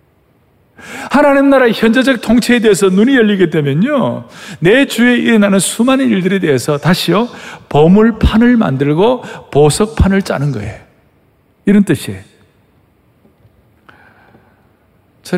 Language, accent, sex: Korean, native, male